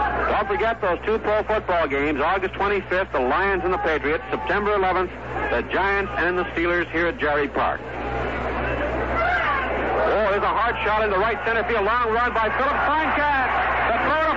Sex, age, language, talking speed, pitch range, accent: male, 60-79, English, 180 wpm, 220-295 Hz, American